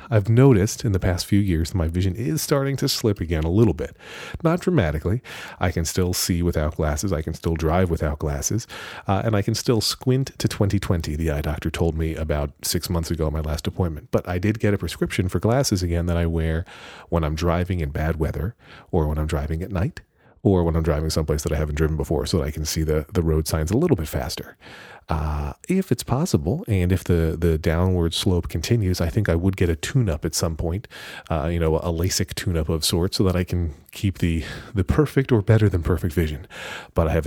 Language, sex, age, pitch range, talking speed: English, male, 40-59, 80-100 Hz, 235 wpm